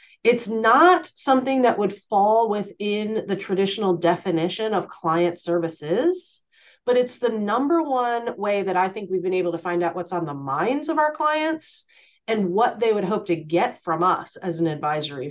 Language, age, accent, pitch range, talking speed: English, 30-49, American, 180-225 Hz, 185 wpm